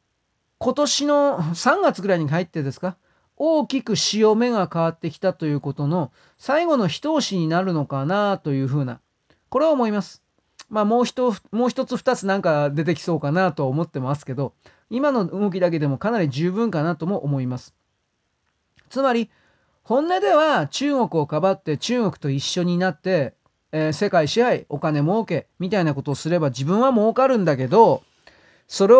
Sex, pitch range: male, 150-235 Hz